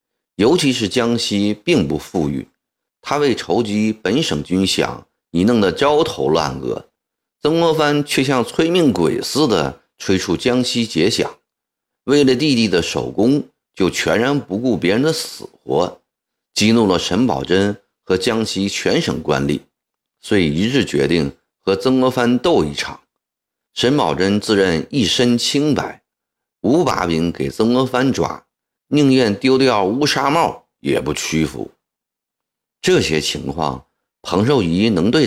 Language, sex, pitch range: Chinese, male, 80-130 Hz